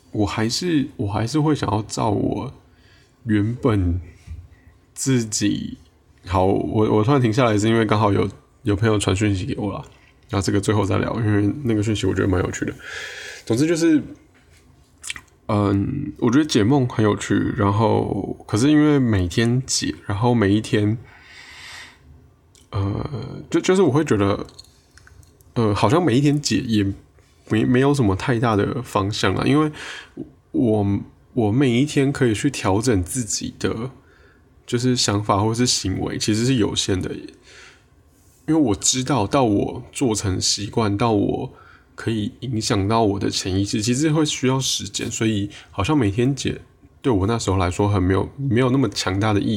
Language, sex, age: Chinese, male, 20-39